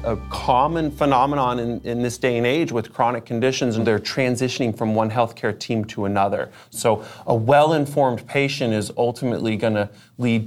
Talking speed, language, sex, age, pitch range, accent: 180 wpm, English, male, 30-49, 110-130 Hz, American